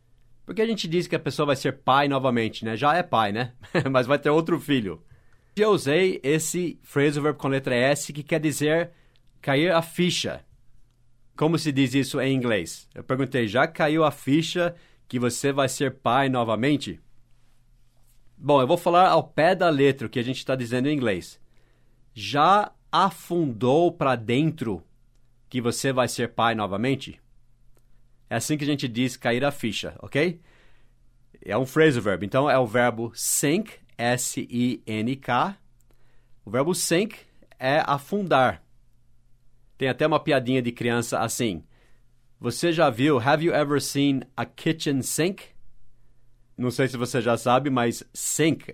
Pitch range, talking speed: 120-150 Hz, 160 wpm